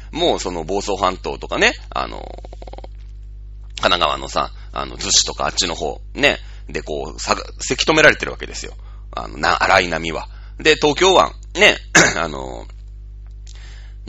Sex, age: male, 30-49